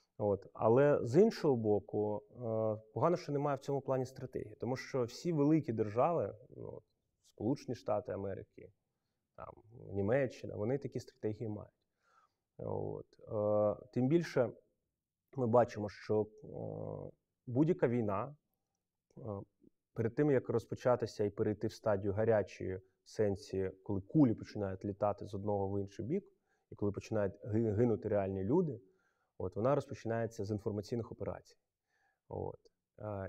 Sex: male